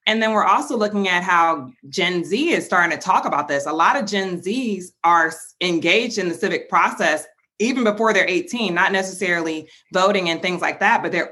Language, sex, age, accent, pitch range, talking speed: English, female, 20-39, American, 165-210 Hz, 205 wpm